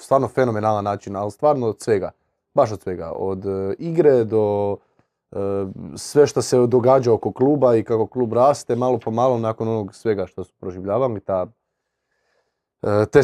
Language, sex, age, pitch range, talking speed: Croatian, male, 30-49, 100-125 Hz, 165 wpm